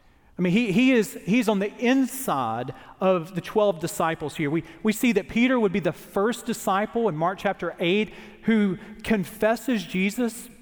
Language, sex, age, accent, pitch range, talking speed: English, male, 40-59, American, 190-235 Hz, 160 wpm